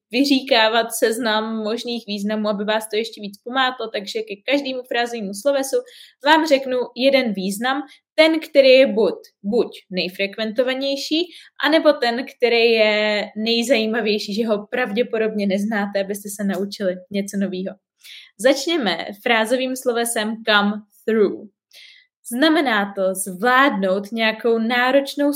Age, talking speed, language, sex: 20-39, 115 wpm, Czech, female